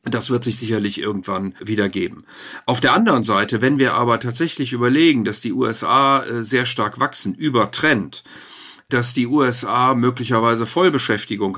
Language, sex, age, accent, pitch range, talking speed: German, male, 50-69, German, 100-125 Hz, 140 wpm